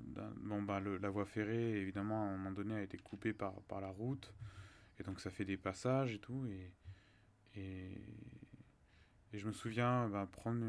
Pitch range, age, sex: 95-115 Hz, 20-39, male